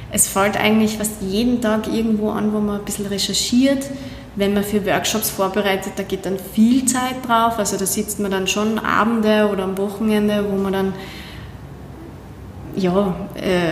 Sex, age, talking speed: female, 20-39, 165 wpm